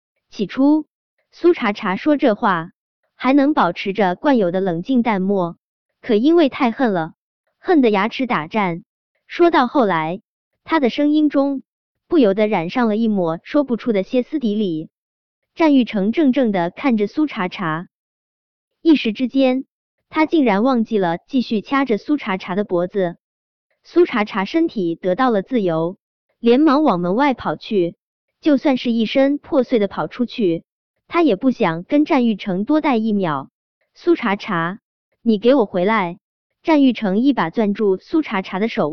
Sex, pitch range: male, 185-280 Hz